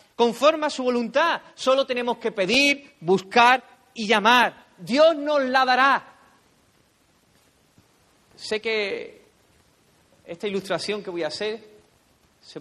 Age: 40-59